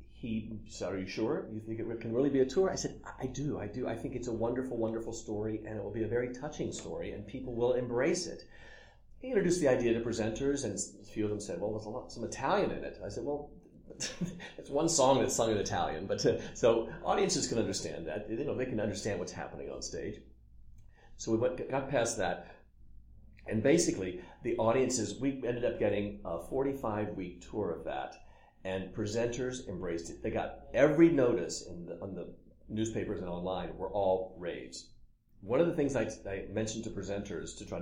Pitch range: 95-125 Hz